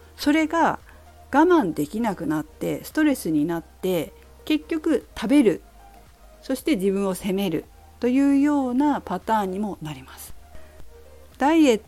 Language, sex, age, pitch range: Japanese, female, 50-69, 155-245 Hz